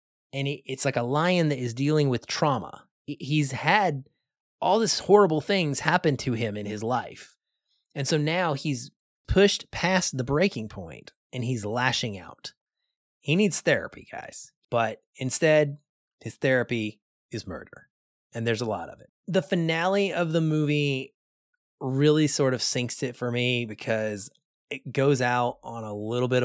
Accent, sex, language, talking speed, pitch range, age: American, male, English, 160 wpm, 120-150 Hz, 30-49